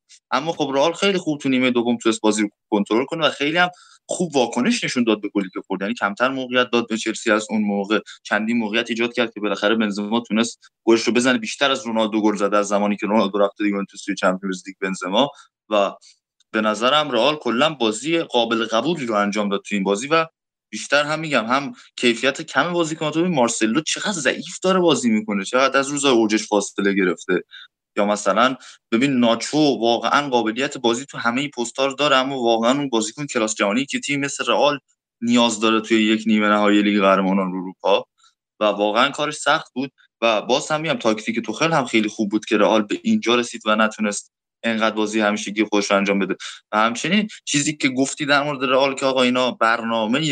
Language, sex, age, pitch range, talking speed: Persian, male, 20-39, 105-135 Hz, 195 wpm